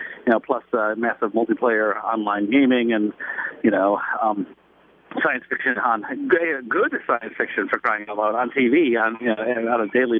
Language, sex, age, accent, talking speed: English, male, 50-69, American, 180 wpm